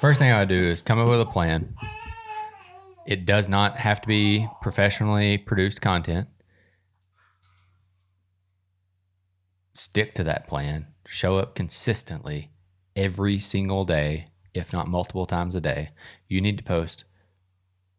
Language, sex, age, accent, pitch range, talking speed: English, male, 20-39, American, 90-105 Hz, 130 wpm